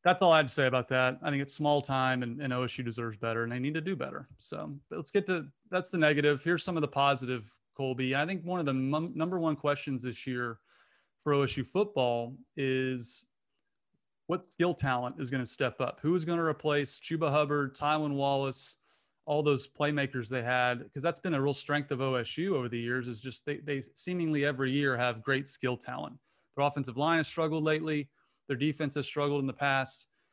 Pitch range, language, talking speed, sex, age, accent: 130-155 Hz, English, 215 wpm, male, 30-49, American